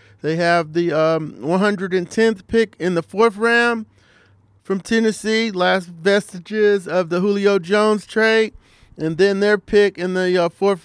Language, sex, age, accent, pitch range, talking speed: English, male, 40-59, American, 175-210 Hz, 150 wpm